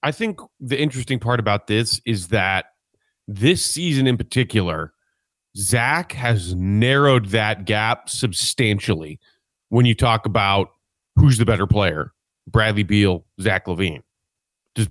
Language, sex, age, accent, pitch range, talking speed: English, male, 30-49, American, 105-135 Hz, 130 wpm